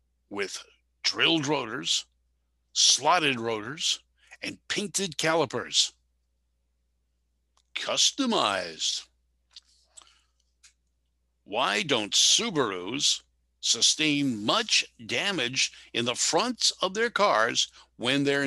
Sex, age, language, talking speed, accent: male, 60-79, English, 75 wpm, American